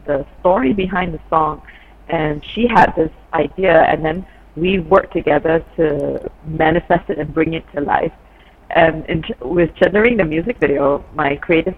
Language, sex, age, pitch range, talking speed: English, female, 30-49, 155-190 Hz, 160 wpm